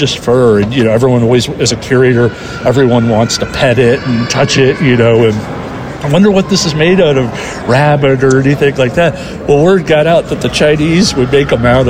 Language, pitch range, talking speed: English, 125-170 Hz, 225 wpm